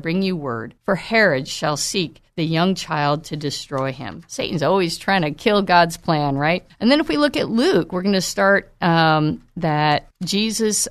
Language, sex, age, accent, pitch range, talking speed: English, female, 50-69, American, 150-200 Hz, 195 wpm